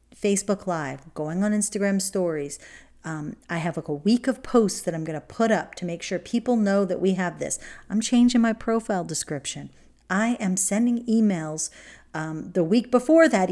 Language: English